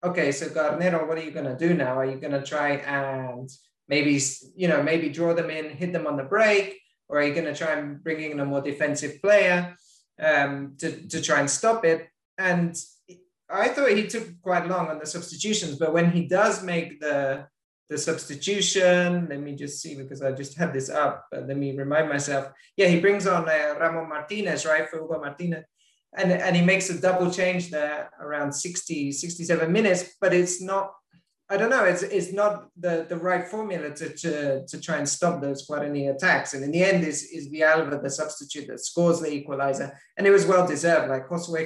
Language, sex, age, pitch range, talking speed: English, male, 30-49, 145-180 Hz, 205 wpm